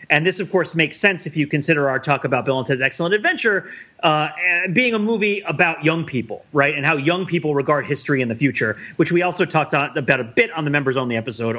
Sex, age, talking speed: male, 30-49, 245 wpm